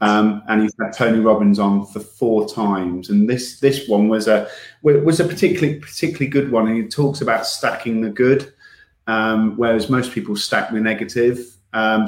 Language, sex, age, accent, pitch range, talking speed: English, male, 30-49, British, 105-130 Hz, 185 wpm